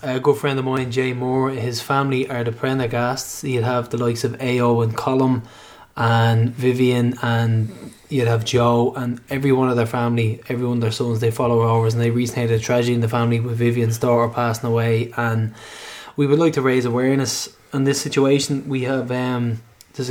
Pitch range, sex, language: 115-130 Hz, male, English